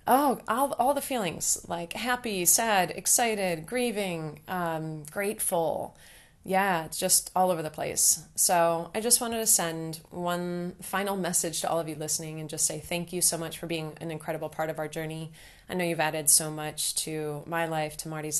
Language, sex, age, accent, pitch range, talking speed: English, female, 20-39, American, 160-185 Hz, 190 wpm